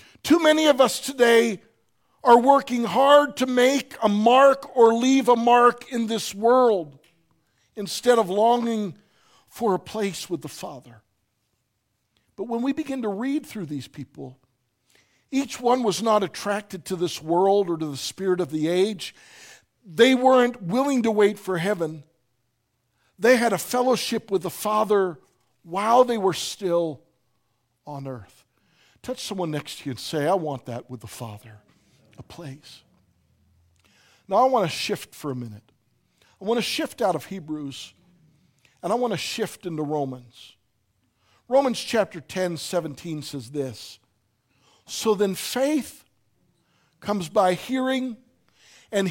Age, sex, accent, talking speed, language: 60-79, male, American, 150 wpm, English